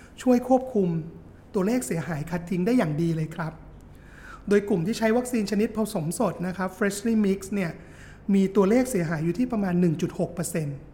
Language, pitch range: Thai, 175-220 Hz